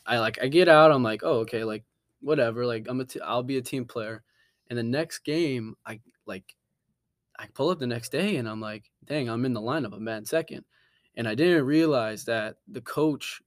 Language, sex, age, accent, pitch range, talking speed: English, male, 20-39, American, 115-135 Hz, 225 wpm